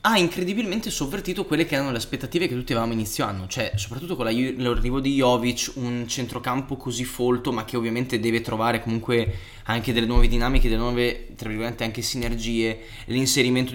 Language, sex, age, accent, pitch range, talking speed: Italian, male, 10-29, native, 110-130 Hz, 180 wpm